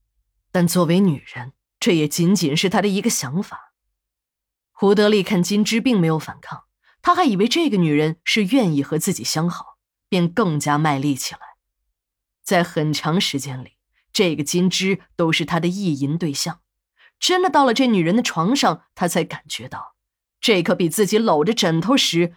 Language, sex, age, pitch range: Chinese, female, 20-39, 150-215 Hz